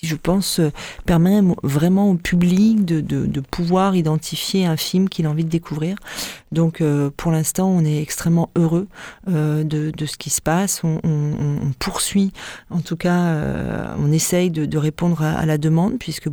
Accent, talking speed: French, 190 wpm